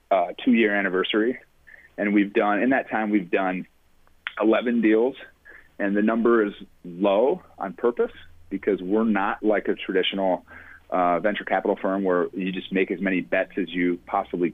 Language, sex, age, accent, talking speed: English, male, 30-49, American, 165 wpm